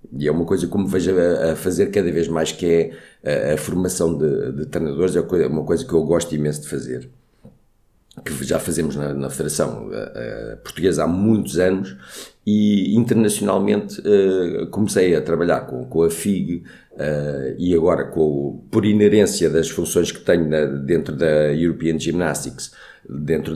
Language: Portuguese